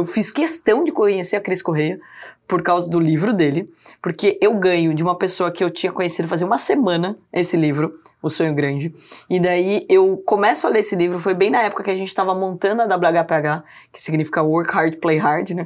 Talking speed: 220 wpm